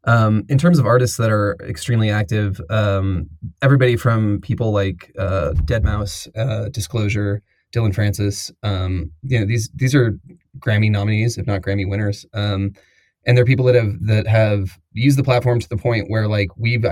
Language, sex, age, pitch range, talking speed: English, male, 20-39, 100-115 Hz, 170 wpm